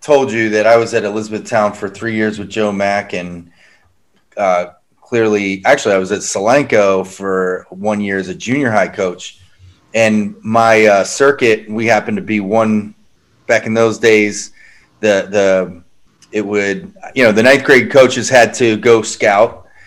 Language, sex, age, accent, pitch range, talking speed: English, male, 30-49, American, 105-120 Hz, 170 wpm